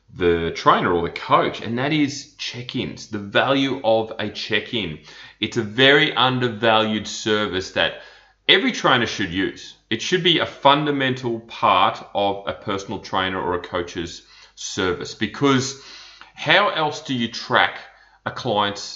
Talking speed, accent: 145 wpm, Australian